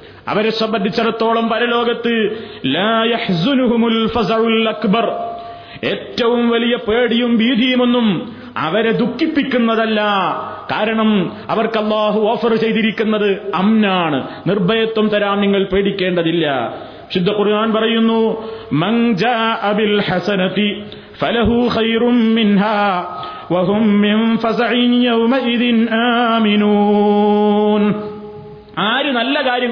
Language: Malayalam